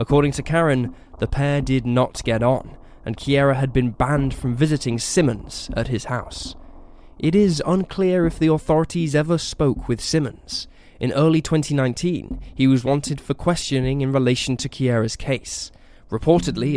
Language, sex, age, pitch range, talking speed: English, male, 10-29, 125-155 Hz, 155 wpm